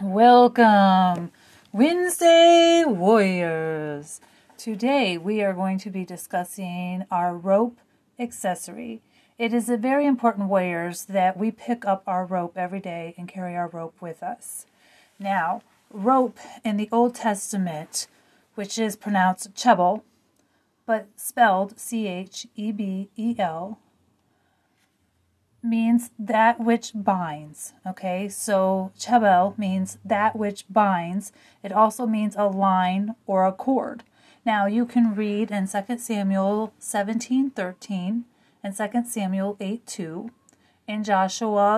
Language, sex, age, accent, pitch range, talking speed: English, female, 30-49, American, 185-230 Hz, 115 wpm